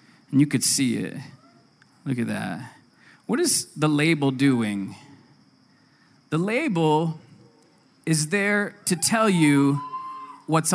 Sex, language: male, English